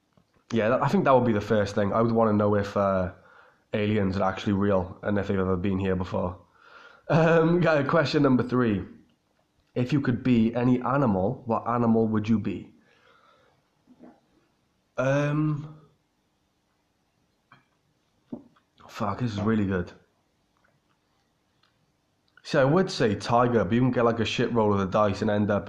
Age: 20-39